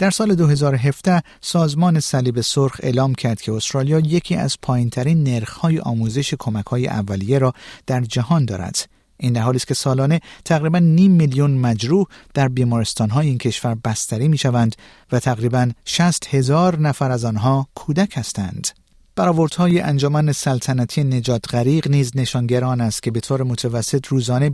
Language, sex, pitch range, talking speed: Persian, male, 120-155 Hz, 160 wpm